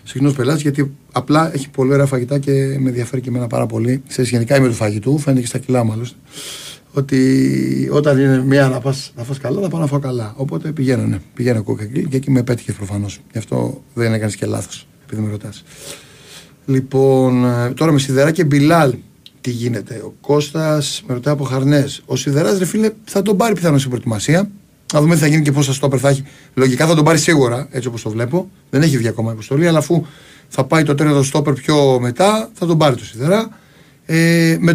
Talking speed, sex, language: 205 wpm, male, Greek